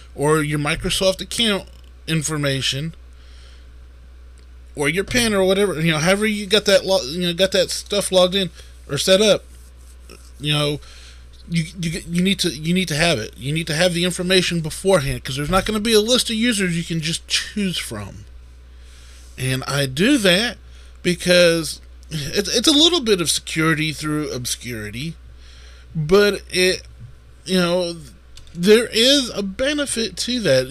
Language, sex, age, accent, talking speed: English, male, 20-39, American, 165 wpm